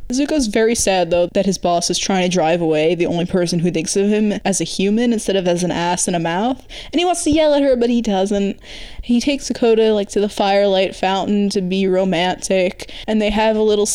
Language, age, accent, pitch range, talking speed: English, 20-39, American, 170-210 Hz, 240 wpm